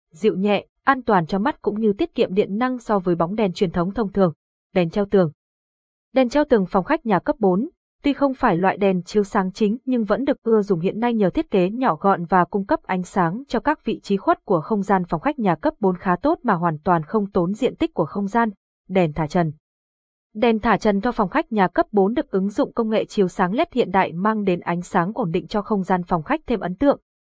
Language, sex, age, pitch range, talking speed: Vietnamese, female, 20-39, 185-235 Hz, 260 wpm